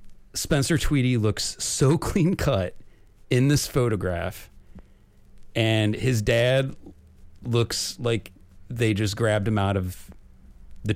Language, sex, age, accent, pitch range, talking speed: English, male, 30-49, American, 90-115 Hz, 115 wpm